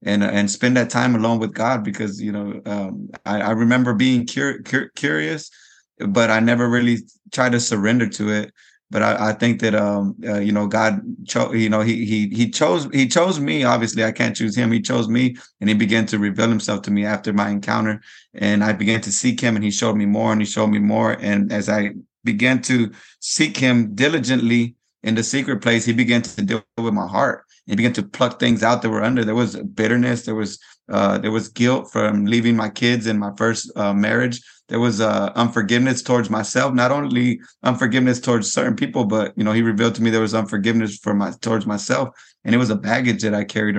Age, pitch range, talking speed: 20-39, 105-120 Hz, 220 wpm